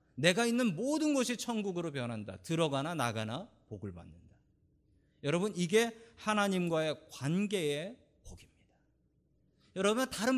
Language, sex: Korean, male